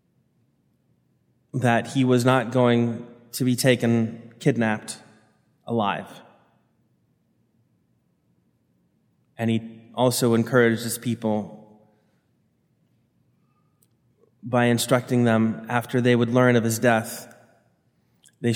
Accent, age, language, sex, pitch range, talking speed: American, 20-39, English, male, 115-125 Hz, 85 wpm